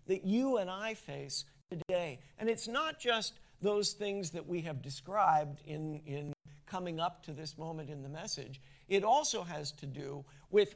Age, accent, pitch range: 50-69, American, 150-205 Hz